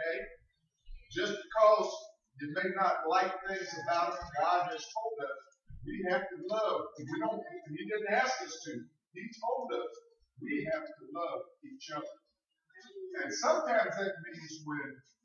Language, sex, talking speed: English, male, 155 wpm